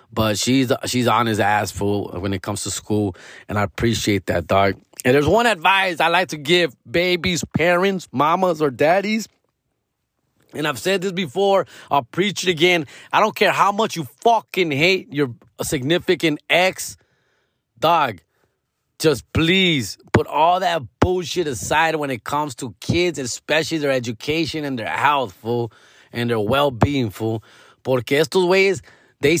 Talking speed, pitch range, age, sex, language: 155 wpm, 120-175 Hz, 30-49, male, English